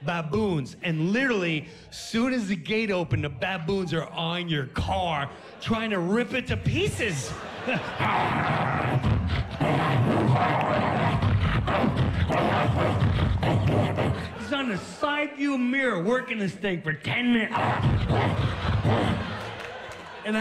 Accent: American